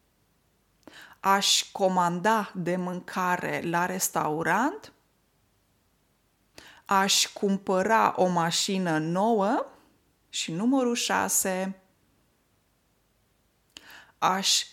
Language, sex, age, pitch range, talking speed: Romanian, female, 20-39, 175-225 Hz, 60 wpm